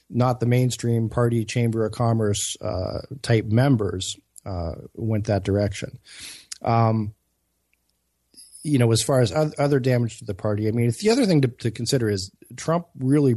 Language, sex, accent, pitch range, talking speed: English, male, American, 105-125 Hz, 160 wpm